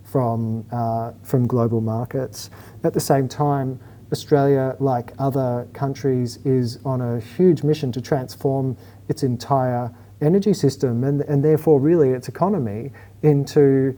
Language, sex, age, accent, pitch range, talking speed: English, male, 40-59, Australian, 115-135 Hz, 130 wpm